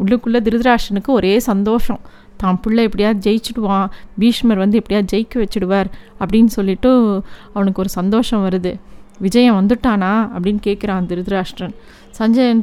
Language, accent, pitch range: Tamil, native, 200-240 Hz